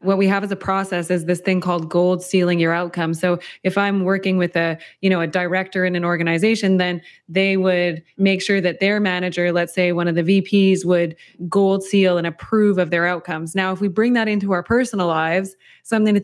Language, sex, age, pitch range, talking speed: English, female, 20-39, 175-200 Hz, 220 wpm